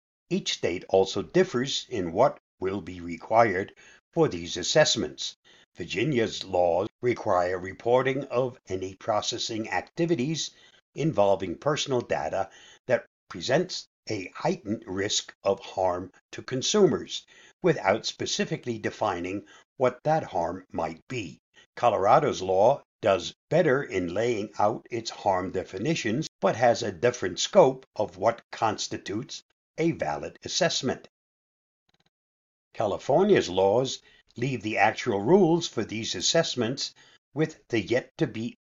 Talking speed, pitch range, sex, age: 115 wpm, 105-160 Hz, male, 60-79